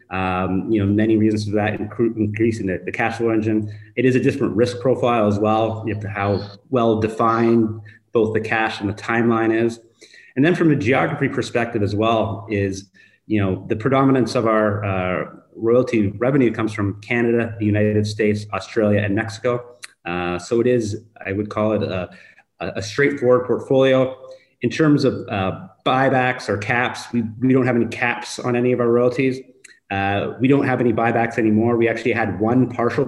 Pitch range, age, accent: 105-120 Hz, 30-49, American